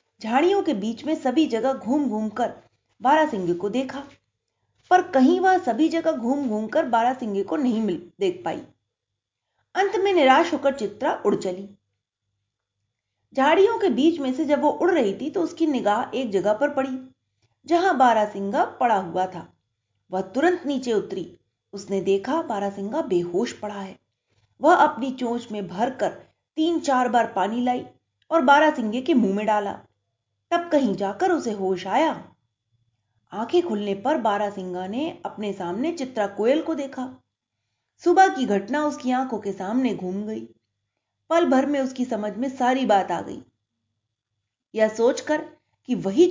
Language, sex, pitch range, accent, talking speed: Hindi, female, 190-295 Hz, native, 155 wpm